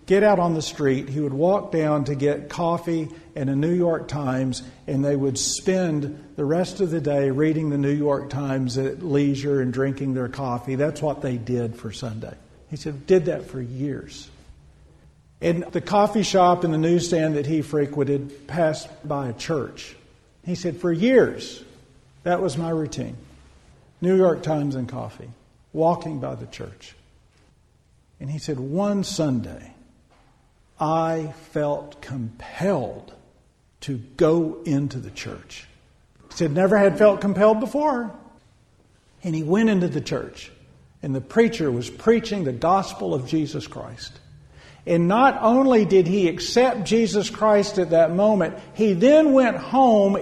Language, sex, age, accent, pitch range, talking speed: English, male, 50-69, American, 140-200 Hz, 155 wpm